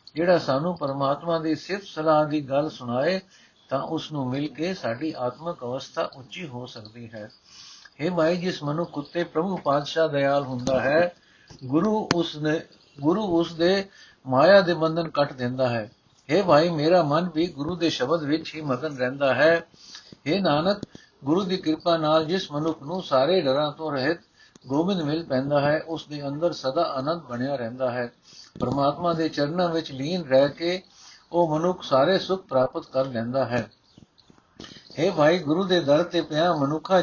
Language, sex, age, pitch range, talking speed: Punjabi, male, 60-79, 130-170 Hz, 165 wpm